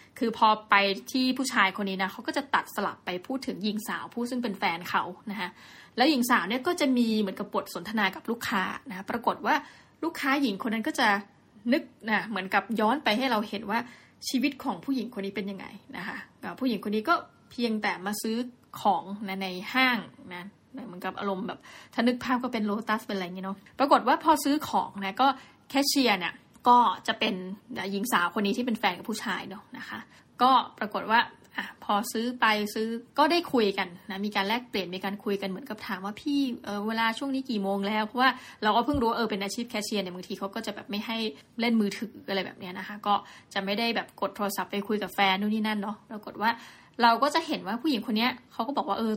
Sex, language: female, Thai